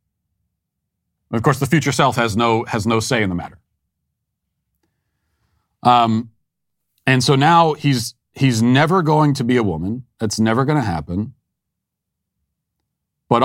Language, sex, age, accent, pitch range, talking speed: English, male, 40-59, American, 95-130 Hz, 140 wpm